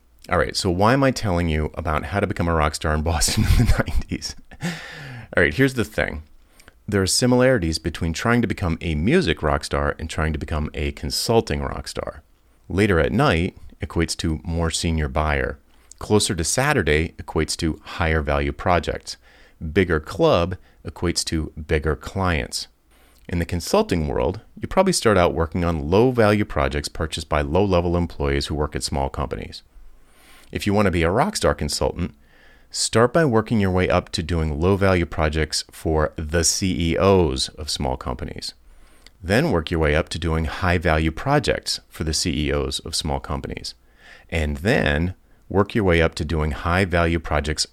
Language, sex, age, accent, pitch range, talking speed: English, male, 30-49, American, 75-90 Hz, 175 wpm